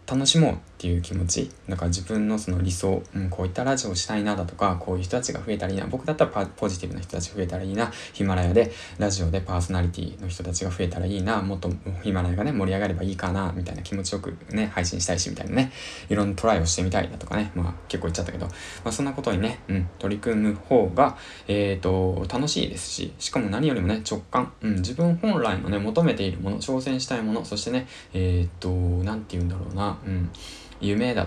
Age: 20-39